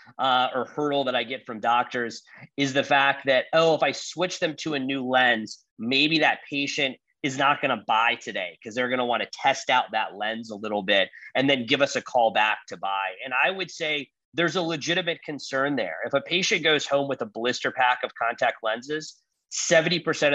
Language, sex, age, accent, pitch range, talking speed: English, male, 30-49, American, 120-145 Hz, 220 wpm